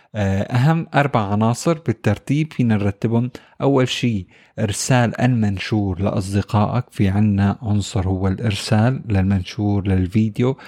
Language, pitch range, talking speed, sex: Arabic, 105-120 Hz, 100 wpm, male